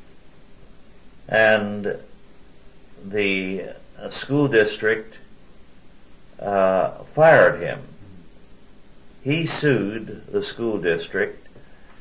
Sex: male